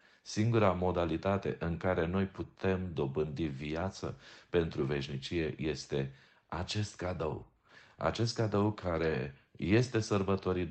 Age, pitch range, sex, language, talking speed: 40-59, 80-110 Hz, male, Romanian, 100 wpm